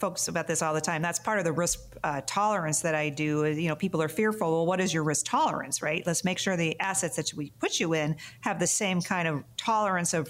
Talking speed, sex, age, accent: 255 wpm, female, 40-59, American